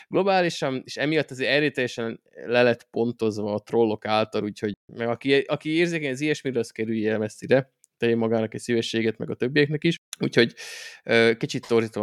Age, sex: 20-39, male